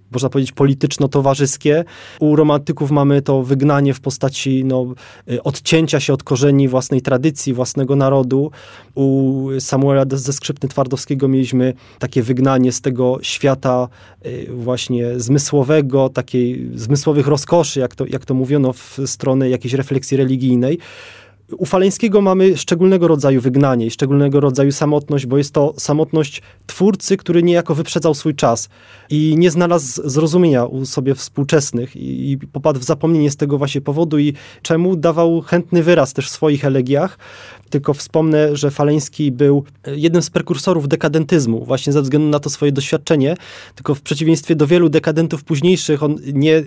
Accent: native